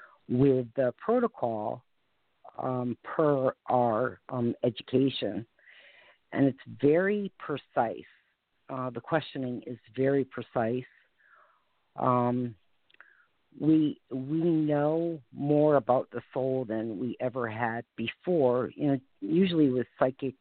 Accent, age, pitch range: American, 50-69, 125-145 Hz